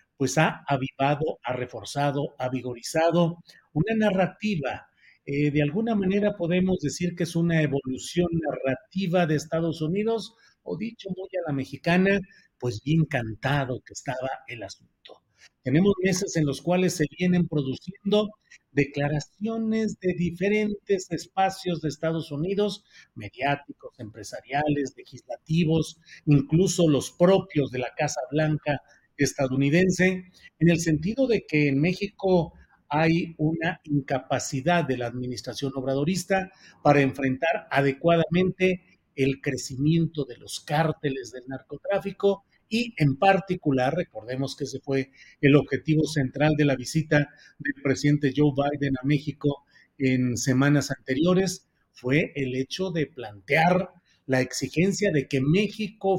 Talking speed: 125 wpm